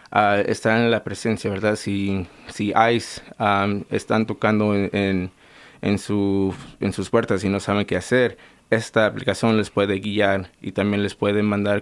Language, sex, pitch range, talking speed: English, male, 100-125 Hz, 175 wpm